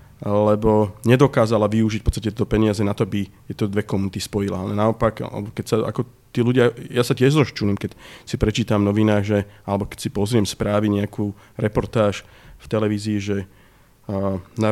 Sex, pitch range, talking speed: male, 105-120 Hz, 170 wpm